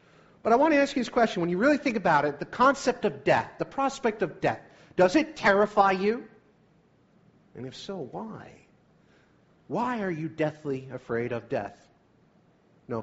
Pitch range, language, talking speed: 125-200 Hz, English, 175 wpm